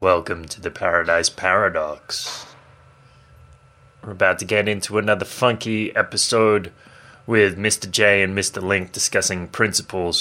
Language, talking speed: English, 125 wpm